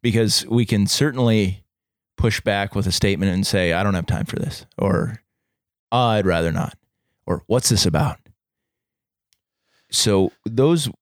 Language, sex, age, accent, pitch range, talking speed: English, male, 30-49, American, 95-115 Hz, 145 wpm